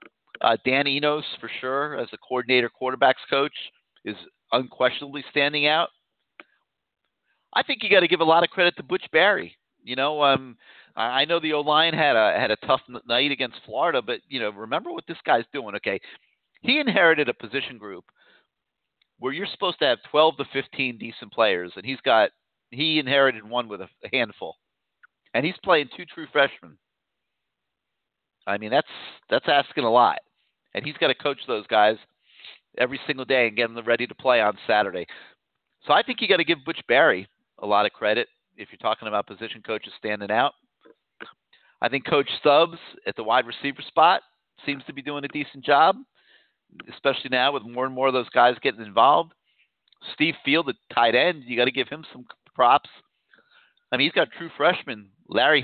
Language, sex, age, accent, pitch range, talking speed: English, male, 40-59, American, 120-150 Hz, 190 wpm